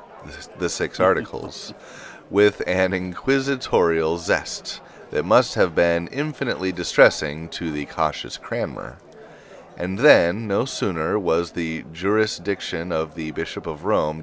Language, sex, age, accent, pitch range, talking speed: English, male, 30-49, American, 80-105 Hz, 120 wpm